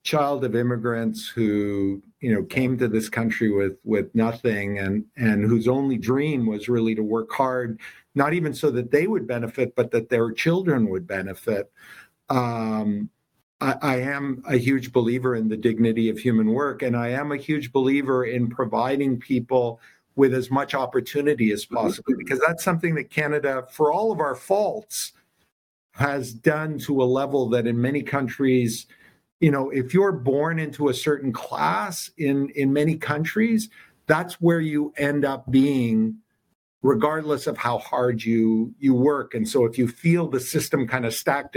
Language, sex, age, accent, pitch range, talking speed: English, male, 50-69, American, 120-150 Hz, 170 wpm